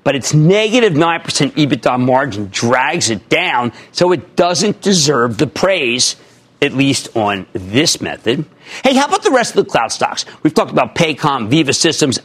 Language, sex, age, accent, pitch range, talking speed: English, male, 50-69, American, 135-190 Hz, 170 wpm